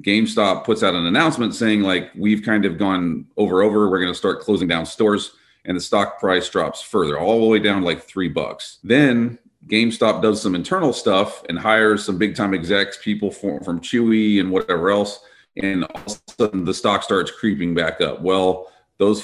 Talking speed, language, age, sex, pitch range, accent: 200 wpm, English, 40-59, male, 90-105 Hz, American